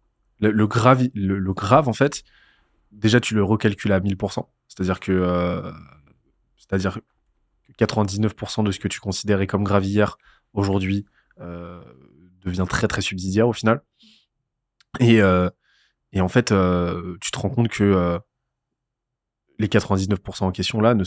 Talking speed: 150 wpm